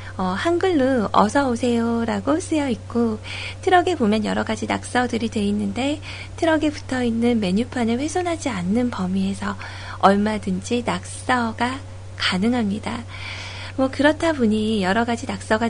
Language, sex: Korean, female